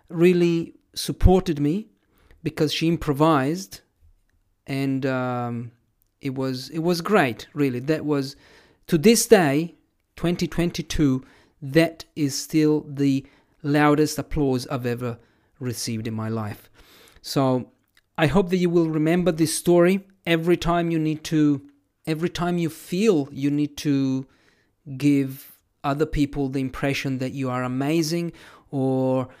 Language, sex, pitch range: English, male, 130-160 Hz